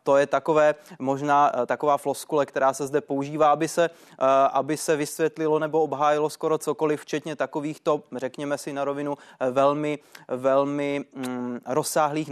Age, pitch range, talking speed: 20-39, 135-150 Hz, 130 wpm